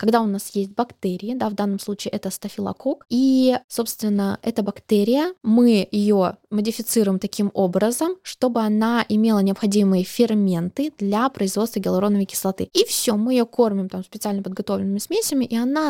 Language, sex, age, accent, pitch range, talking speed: Russian, female, 20-39, native, 200-240 Hz, 150 wpm